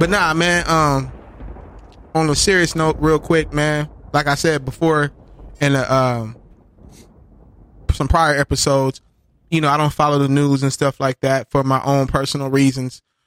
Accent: American